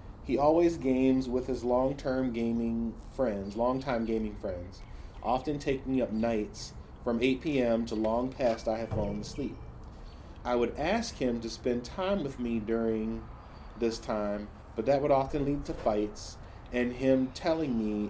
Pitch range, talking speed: 105-125 Hz, 160 wpm